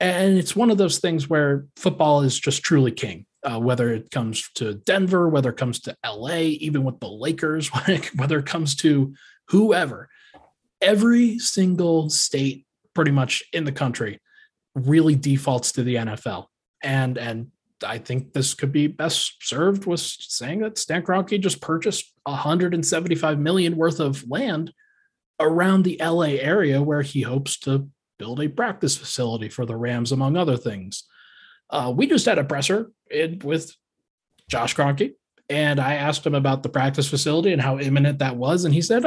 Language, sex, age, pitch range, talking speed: English, male, 20-39, 135-175 Hz, 170 wpm